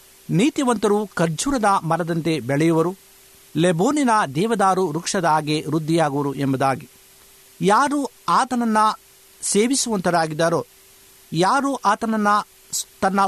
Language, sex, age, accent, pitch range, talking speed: Kannada, male, 50-69, native, 165-220 Hz, 70 wpm